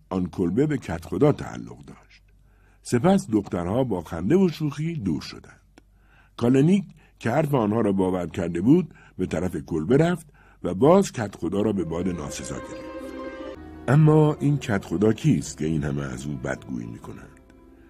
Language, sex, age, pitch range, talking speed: Persian, male, 60-79, 85-140 Hz, 155 wpm